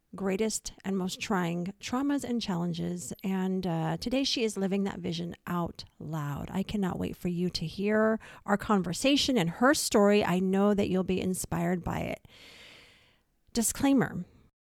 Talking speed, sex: 155 wpm, female